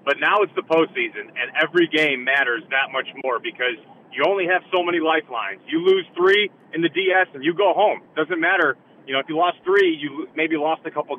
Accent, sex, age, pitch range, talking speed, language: American, male, 30-49, 140-180 Hz, 225 wpm, English